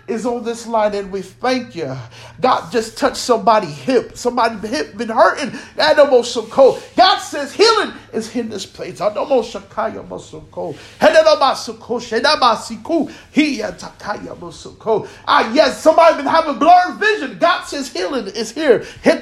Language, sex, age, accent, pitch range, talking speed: English, male, 40-59, American, 210-290 Hz, 110 wpm